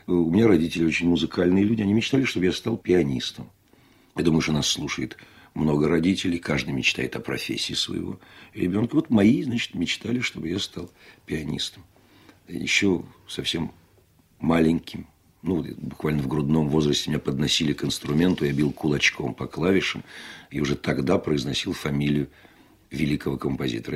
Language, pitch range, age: Russian, 75-95 Hz, 50-69